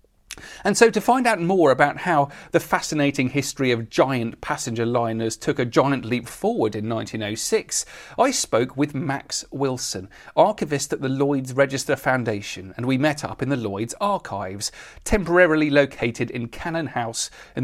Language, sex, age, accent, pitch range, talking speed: English, male, 40-59, British, 130-175 Hz, 160 wpm